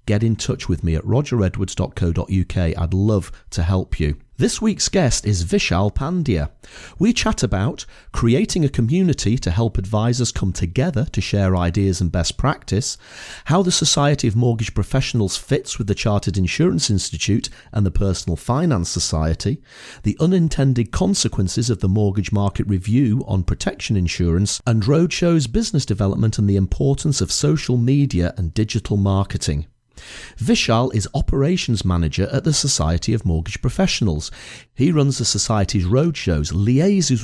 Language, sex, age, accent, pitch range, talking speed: English, male, 40-59, British, 95-130 Hz, 150 wpm